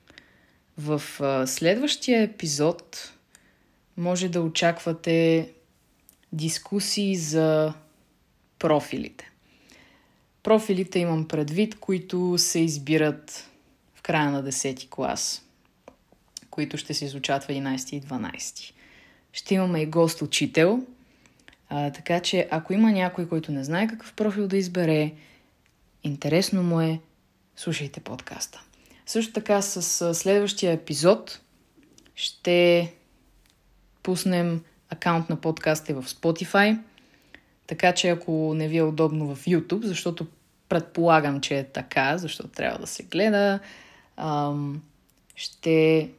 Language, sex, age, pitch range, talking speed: Bulgarian, female, 20-39, 150-185 Hz, 105 wpm